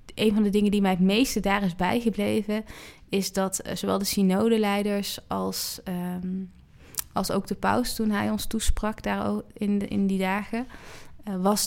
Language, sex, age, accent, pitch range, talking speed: Dutch, female, 20-39, Dutch, 180-205 Hz, 175 wpm